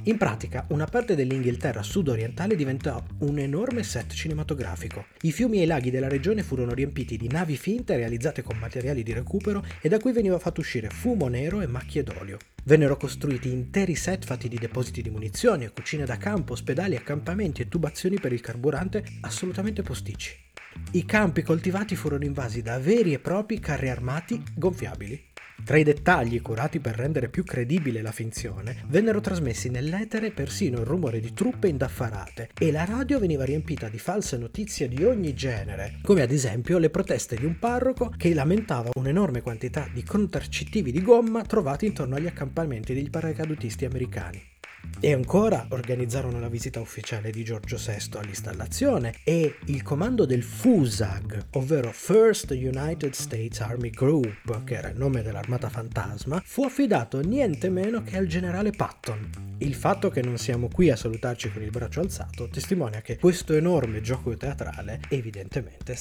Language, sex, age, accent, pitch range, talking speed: Italian, male, 30-49, native, 115-170 Hz, 165 wpm